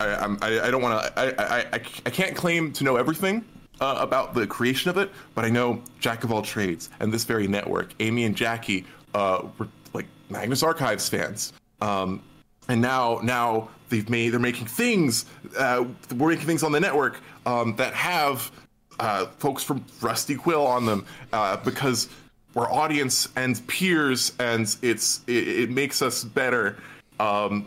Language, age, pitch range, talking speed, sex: English, 20-39, 110-135 Hz, 170 wpm, male